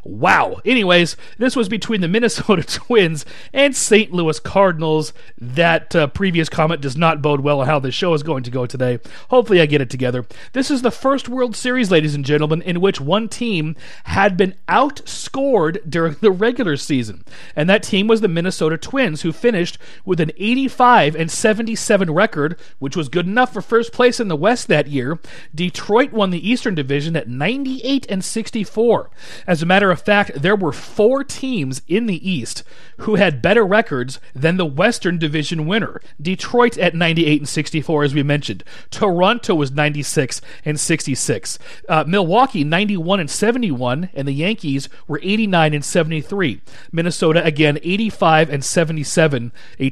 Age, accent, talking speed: 40-59, American, 170 wpm